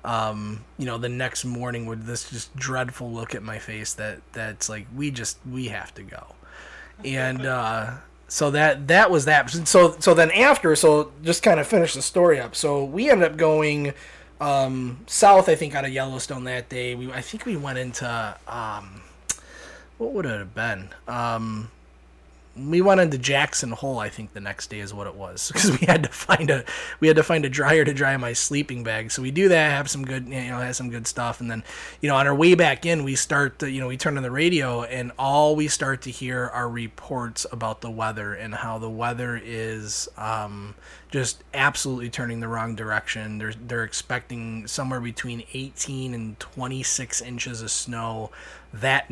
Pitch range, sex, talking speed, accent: 110-135 Hz, male, 205 wpm, American